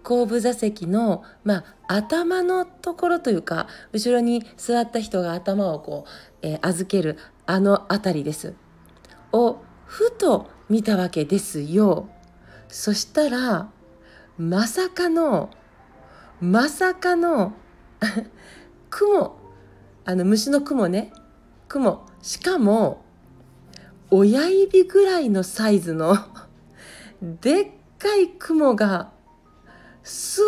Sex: female